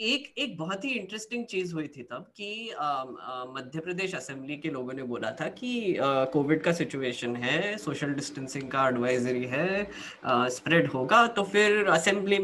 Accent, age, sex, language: native, 20-39, female, Hindi